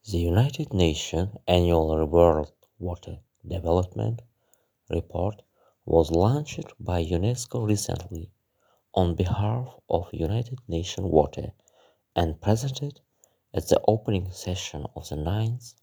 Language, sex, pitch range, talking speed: Russian, male, 85-115 Hz, 105 wpm